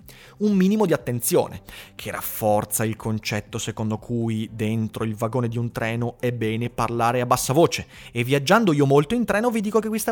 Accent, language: native, Italian